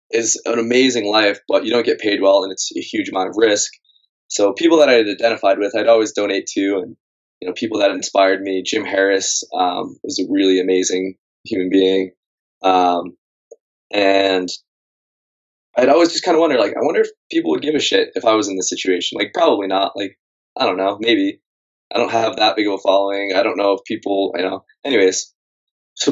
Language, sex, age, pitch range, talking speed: English, male, 20-39, 95-130 Hz, 210 wpm